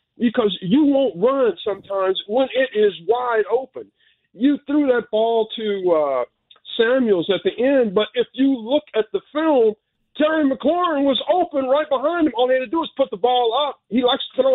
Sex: male